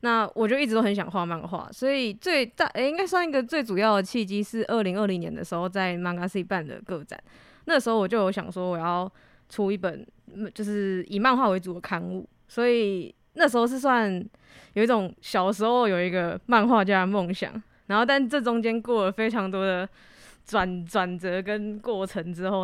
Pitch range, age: 190-235 Hz, 20-39